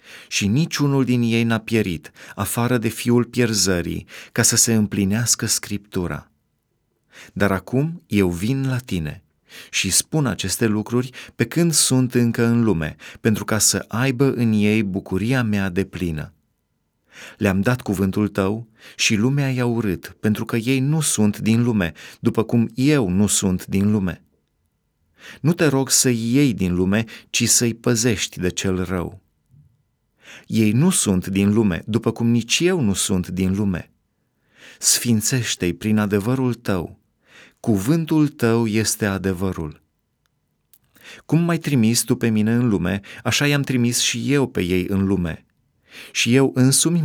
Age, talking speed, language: 30-49, 150 wpm, Romanian